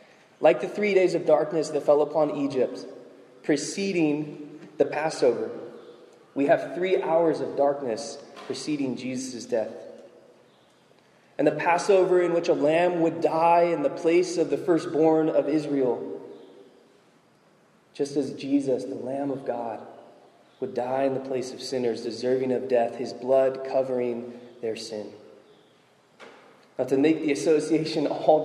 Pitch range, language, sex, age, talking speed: 135-165 Hz, English, male, 20-39, 140 wpm